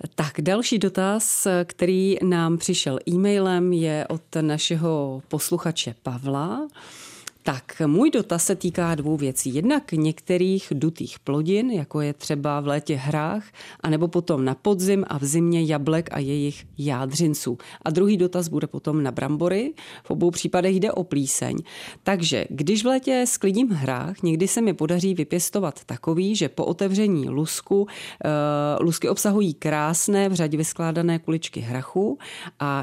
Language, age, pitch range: Czech, 40-59, 150-190 Hz